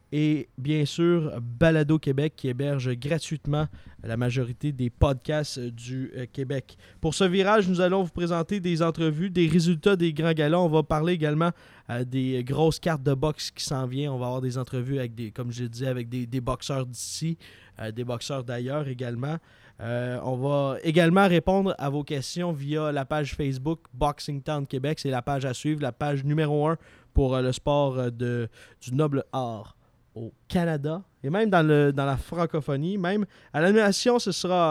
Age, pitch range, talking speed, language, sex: 20-39, 125-160 Hz, 185 wpm, French, male